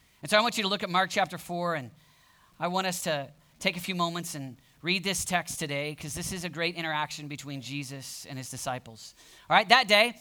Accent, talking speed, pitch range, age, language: American, 235 wpm, 165-240 Hz, 40-59, English